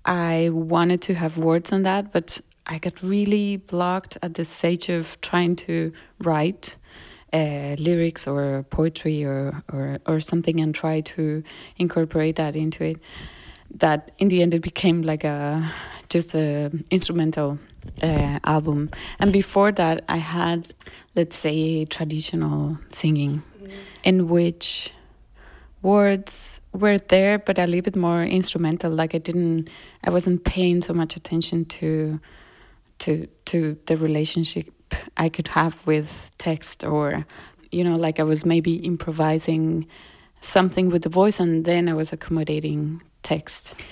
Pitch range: 155-180 Hz